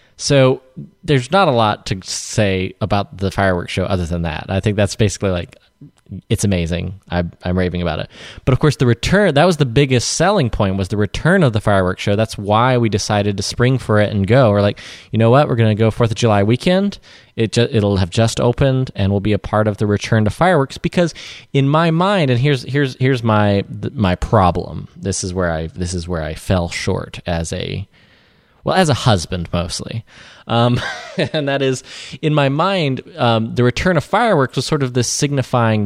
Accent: American